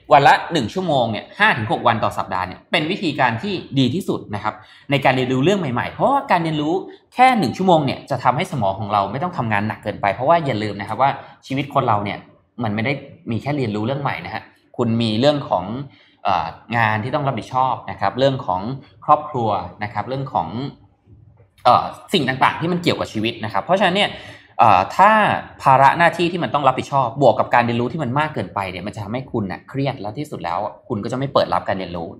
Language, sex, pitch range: Thai, male, 105-145 Hz